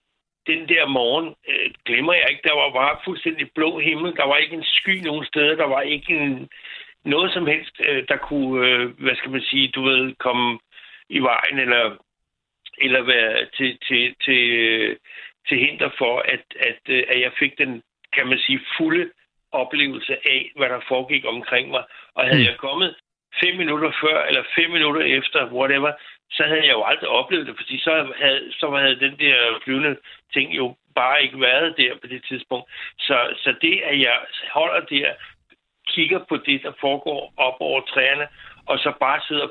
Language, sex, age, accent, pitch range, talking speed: Danish, male, 60-79, native, 125-150 Hz, 185 wpm